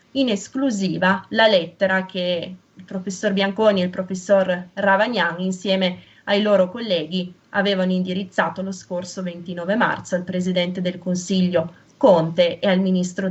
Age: 20-39